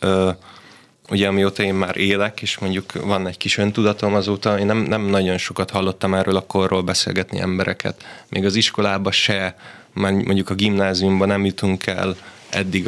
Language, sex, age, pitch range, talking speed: Hungarian, male, 20-39, 95-105 Hz, 165 wpm